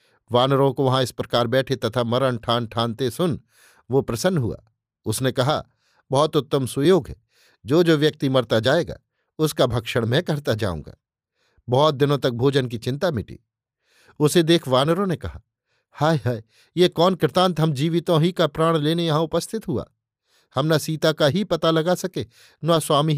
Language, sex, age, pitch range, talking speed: Hindi, male, 50-69, 130-160 Hz, 170 wpm